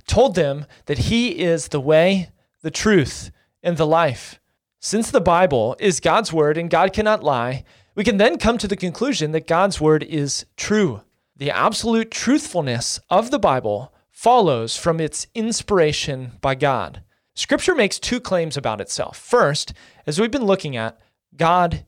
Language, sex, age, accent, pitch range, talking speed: English, male, 30-49, American, 135-195 Hz, 160 wpm